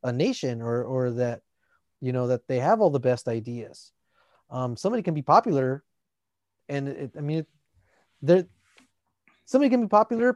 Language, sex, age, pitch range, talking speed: English, male, 30-49, 130-190 Hz, 155 wpm